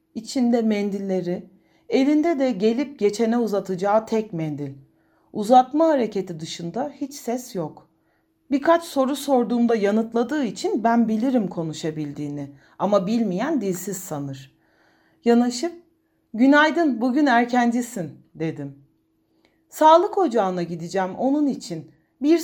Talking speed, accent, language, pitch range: 100 wpm, native, Turkish, 170-260 Hz